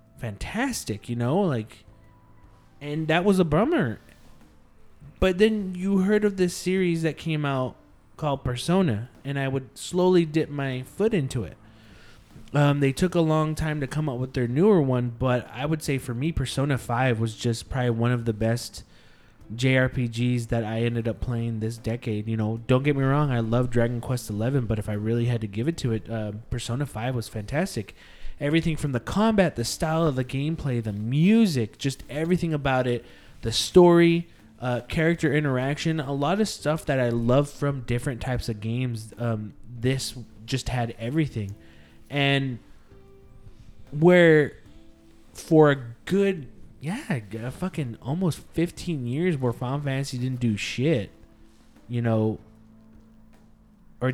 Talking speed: 165 wpm